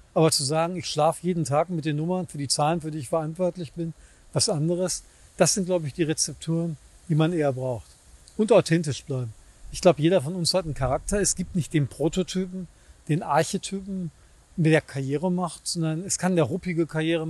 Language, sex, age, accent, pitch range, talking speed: German, male, 40-59, German, 150-175 Hz, 200 wpm